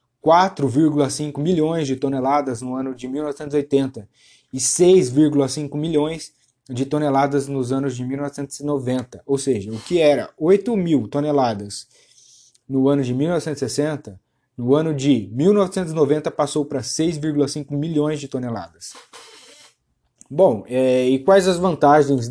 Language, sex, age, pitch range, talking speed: Portuguese, male, 20-39, 125-150 Hz, 115 wpm